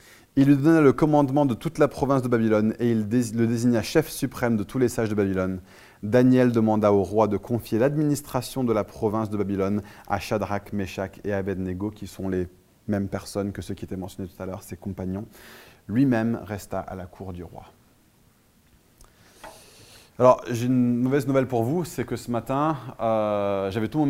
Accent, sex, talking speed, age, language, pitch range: French, male, 195 wpm, 20-39, French, 115-155 Hz